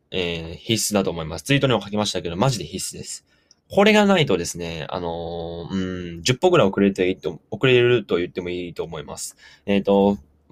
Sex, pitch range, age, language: male, 95-140 Hz, 20-39, Japanese